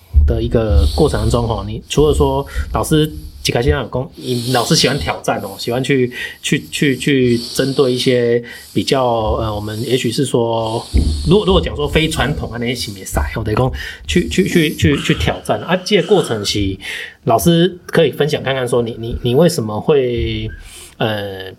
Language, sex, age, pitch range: Chinese, male, 20-39, 105-135 Hz